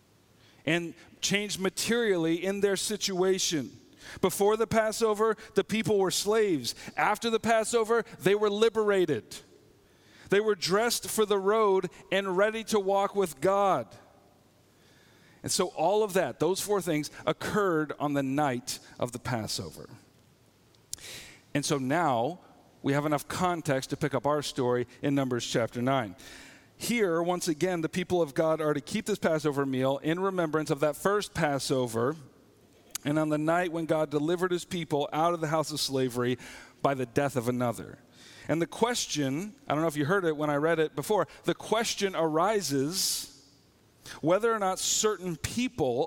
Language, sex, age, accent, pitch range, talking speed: English, male, 40-59, American, 145-200 Hz, 160 wpm